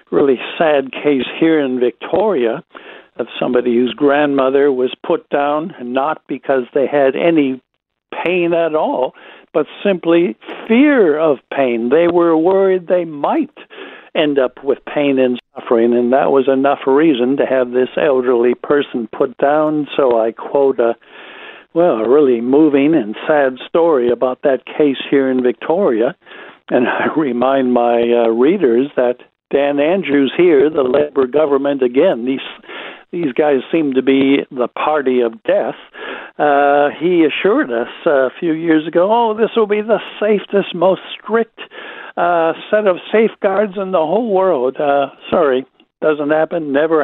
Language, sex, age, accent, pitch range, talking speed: English, male, 60-79, American, 130-170 Hz, 150 wpm